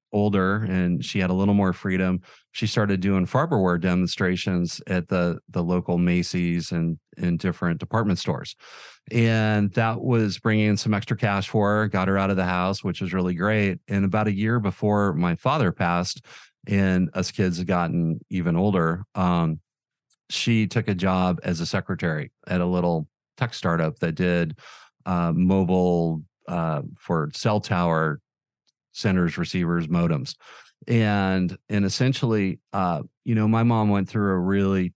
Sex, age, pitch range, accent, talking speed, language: male, 40-59, 90-100 Hz, American, 160 wpm, English